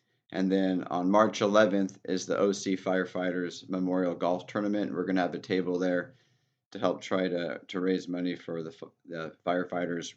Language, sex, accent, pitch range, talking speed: English, male, American, 90-100 Hz, 175 wpm